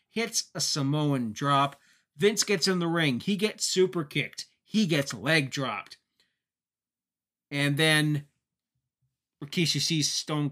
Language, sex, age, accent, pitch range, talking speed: English, male, 30-49, American, 130-170 Hz, 125 wpm